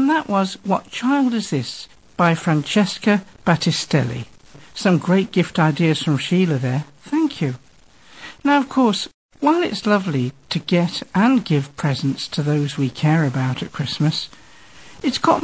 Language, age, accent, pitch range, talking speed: English, 60-79, British, 145-225 Hz, 150 wpm